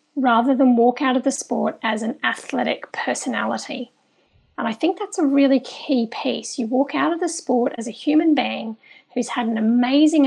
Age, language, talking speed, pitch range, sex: 40-59, English, 195 wpm, 245-285 Hz, female